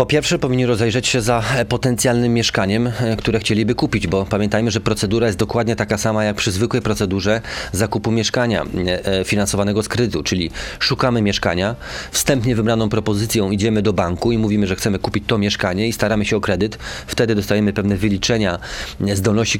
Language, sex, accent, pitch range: Polish, male, native, 105-125 Hz